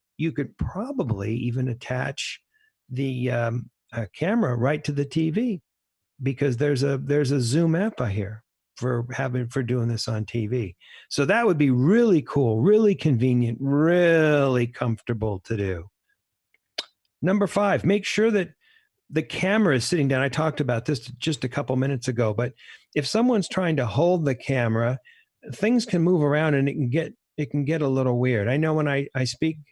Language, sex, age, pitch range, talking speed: English, male, 50-69, 120-155 Hz, 180 wpm